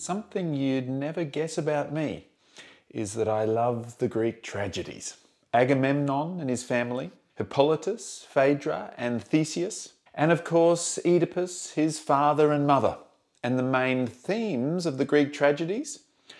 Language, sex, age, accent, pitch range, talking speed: English, male, 30-49, Australian, 125-165 Hz, 135 wpm